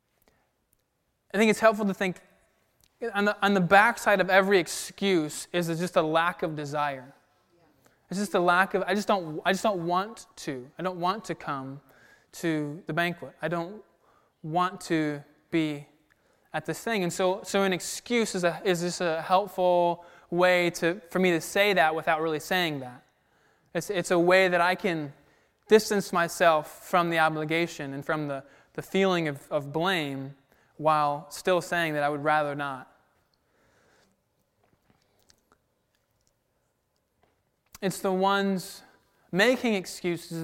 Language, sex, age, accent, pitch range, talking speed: English, male, 20-39, American, 155-190 Hz, 155 wpm